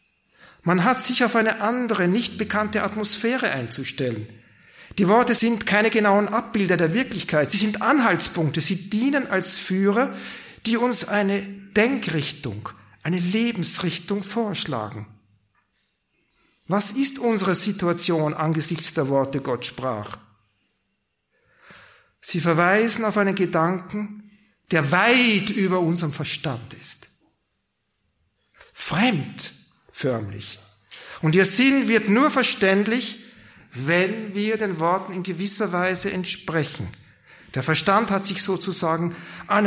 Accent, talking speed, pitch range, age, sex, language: German, 110 wpm, 135-205 Hz, 50-69, male, German